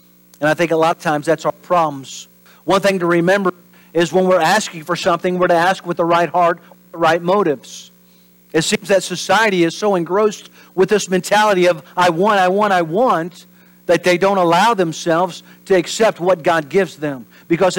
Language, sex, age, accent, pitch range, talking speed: English, male, 50-69, American, 155-185 Hz, 200 wpm